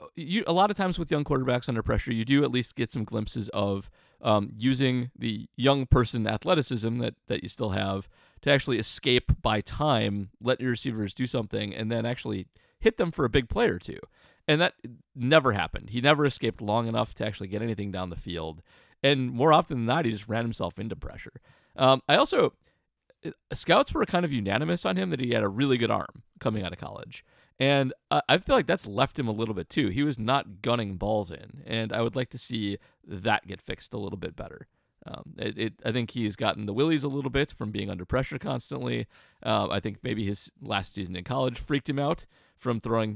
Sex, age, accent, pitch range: male, 30-49, American, 105-135 Hz